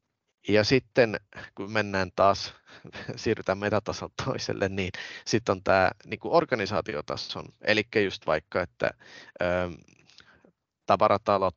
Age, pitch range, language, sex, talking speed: 30-49, 90-105 Hz, Finnish, male, 105 wpm